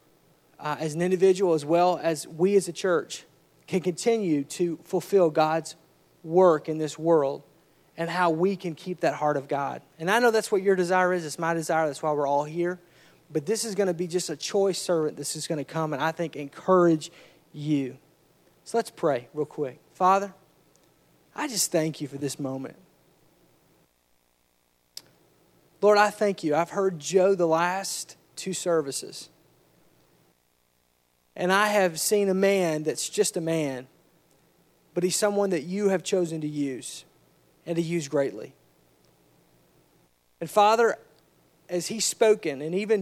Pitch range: 155-200 Hz